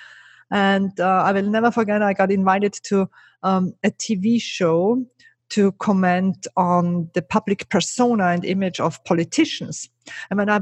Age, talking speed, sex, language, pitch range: 50-69, 155 wpm, female, English, 180-225 Hz